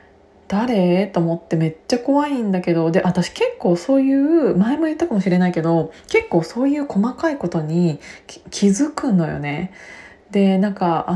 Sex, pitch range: female, 175-250 Hz